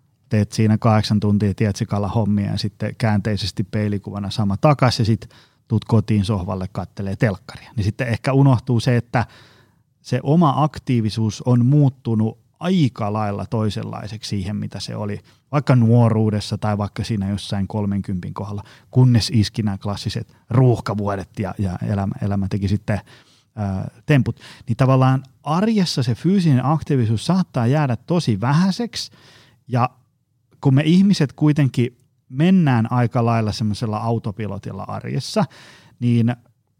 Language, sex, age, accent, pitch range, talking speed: Finnish, male, 30-49, native, 105-130 Hz, 130 wpm